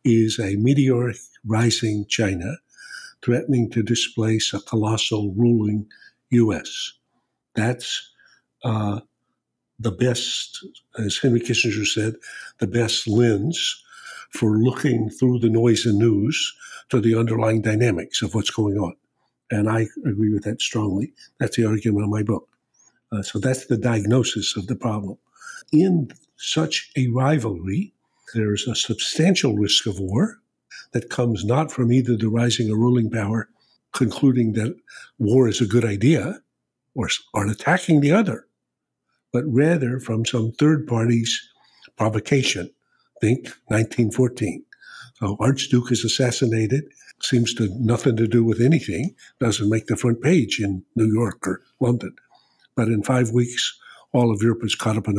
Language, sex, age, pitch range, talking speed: English, male, 60-79, 110-130 Hz, 140 wpm